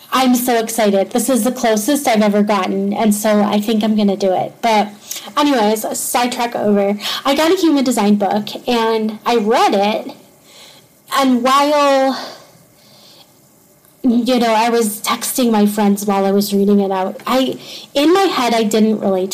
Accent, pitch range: American, 205-250 Hz